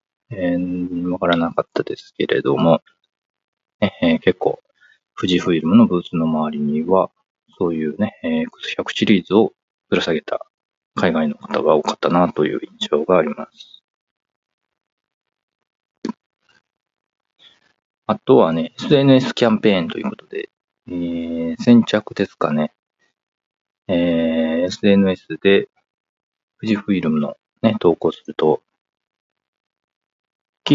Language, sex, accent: Japanese, male, native